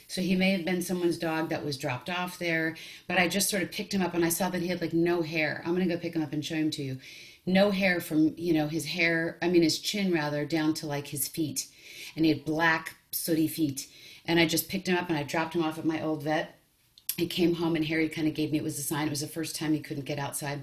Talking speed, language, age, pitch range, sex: 290 wpm, English, 40-59, 150-170 Hz, female